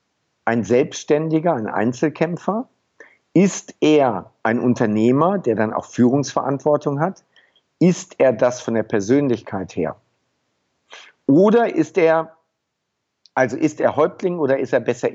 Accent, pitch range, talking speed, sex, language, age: German, 125-165 Hz, 125 wpm, male, German, 50-69